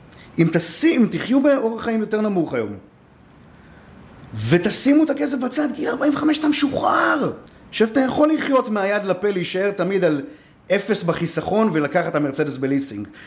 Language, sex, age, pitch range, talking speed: Hebrew, male, 40-59, 130-200 Hz, 140 wpm